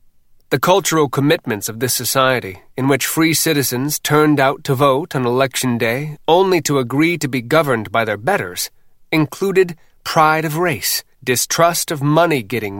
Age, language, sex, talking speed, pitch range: 30-49, English, male, 155 wpm, 125-155 Hz